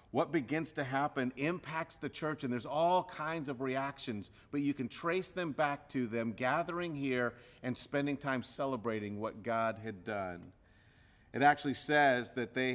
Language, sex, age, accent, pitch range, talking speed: English, male, 50-69, American, 120-150 Hz, 170 wpm